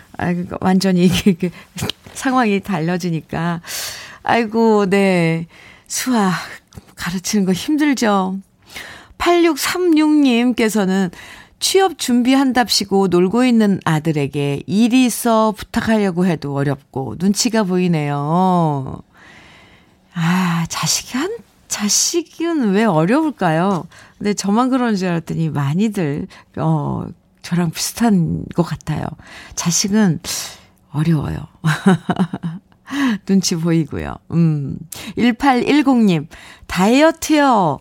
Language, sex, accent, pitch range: Korean, female, native, 170-245 Hz